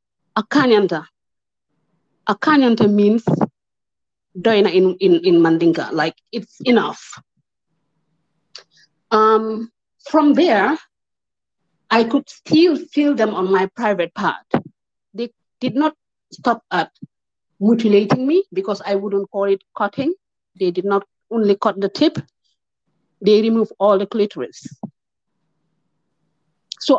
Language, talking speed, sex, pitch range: English, 110 wpm, female, 190-265 Hz